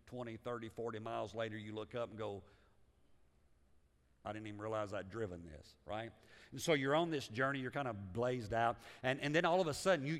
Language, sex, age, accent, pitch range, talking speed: English, male, 50-69, American, 125-180 Hz, 220 wpm